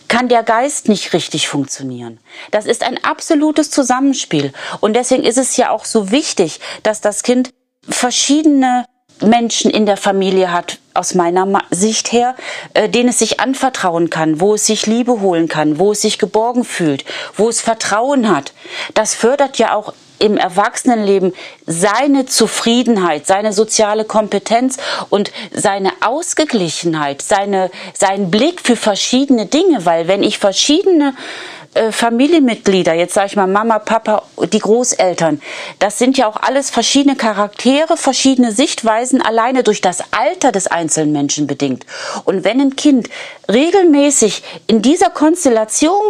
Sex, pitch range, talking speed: female, 185-265 Hz, 145 wpm